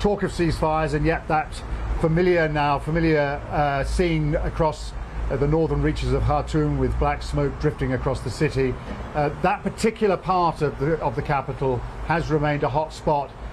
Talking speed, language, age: 165 wpm, English, 50-69